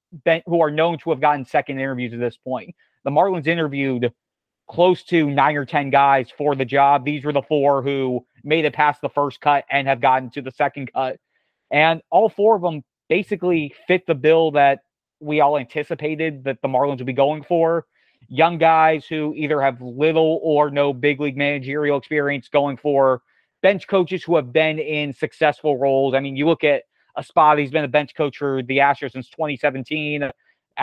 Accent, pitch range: American, 140-160 Hz